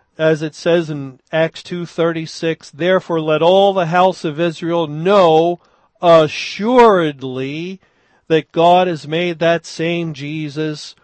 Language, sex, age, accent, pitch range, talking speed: English, male, 40-59, American, 140-175 Hz, 120 wpm